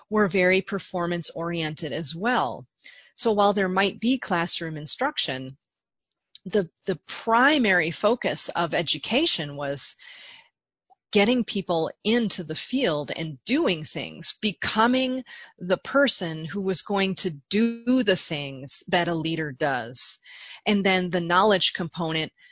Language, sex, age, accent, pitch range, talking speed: English, female, 30-49, American, 165-210 Hz, 125 wpm